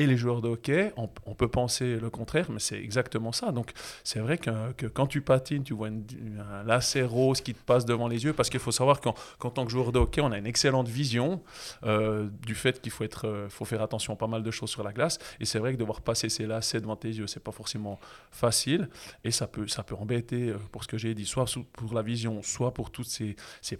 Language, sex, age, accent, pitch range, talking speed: French, male, 20-39, French, 110-125 Hz, 265 wpm